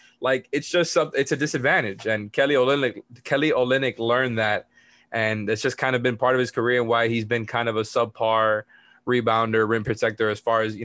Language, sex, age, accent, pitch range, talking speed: English, male, 20-39, American, 110-120 Hz, 215 wpm